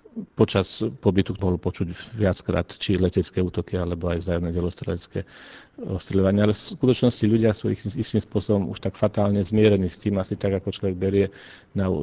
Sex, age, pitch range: male, 40-59, 90-100 Hz